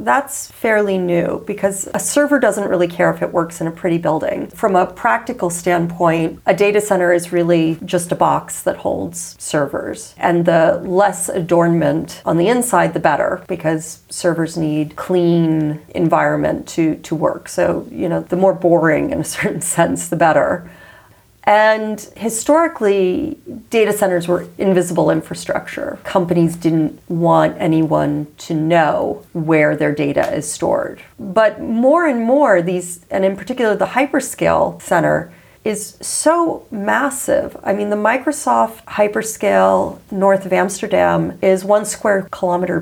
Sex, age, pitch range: female, 40-59, 170-215 Hz